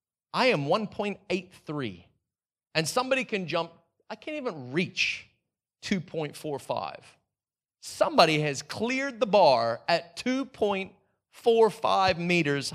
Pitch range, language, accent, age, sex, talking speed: 160-240 Hz, English, American, 30-49, male, 95 wpm